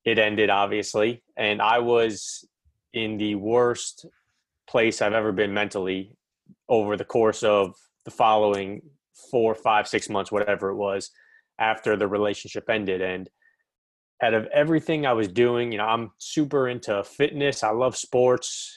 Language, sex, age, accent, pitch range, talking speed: English, male, 30-49, American, 105-125 Hz, 150 wpm